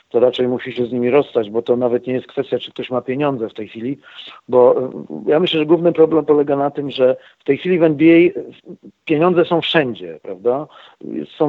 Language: Polish